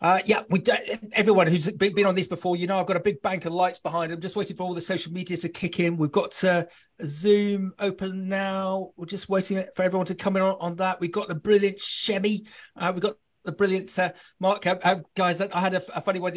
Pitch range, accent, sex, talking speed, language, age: 170-205 Hz, British, male, 250 wpm, English, 30-49